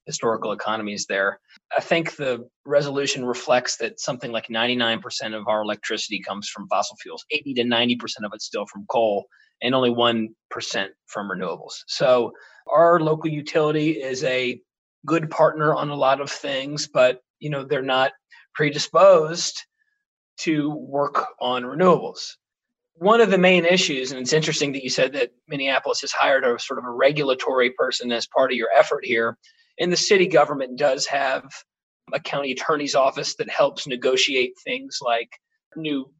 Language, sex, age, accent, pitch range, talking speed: English, male, 30-49, American, 130-170 Hz, 160 wpm